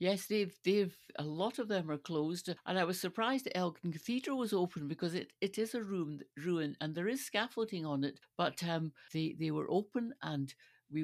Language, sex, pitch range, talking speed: English, female, 160-205 Hz, 205 wpm